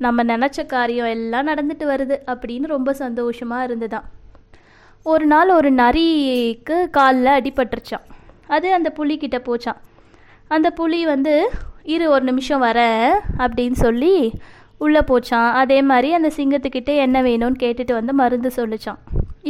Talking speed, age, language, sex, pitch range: 125 wpm, 20-39, Tamil, female, 250-310 Hz